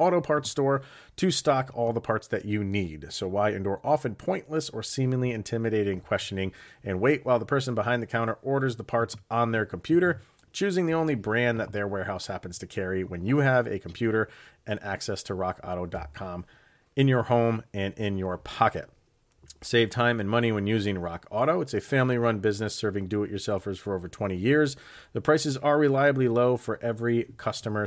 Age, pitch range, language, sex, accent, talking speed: 40-59, 100-120 Hz, English, male, American, 185 wpm